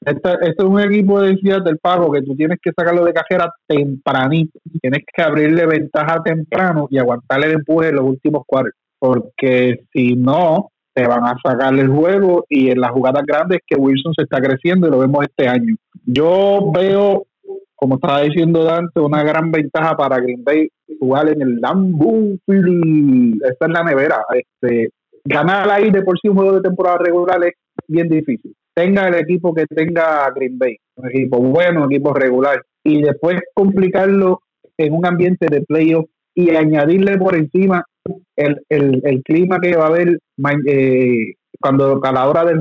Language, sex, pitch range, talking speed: Spanish, male, 135-180 Hz, 175 wpm